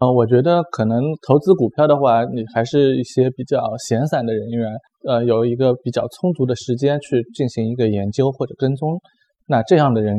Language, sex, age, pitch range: Chinese, male, 20-39, 115-145 Hz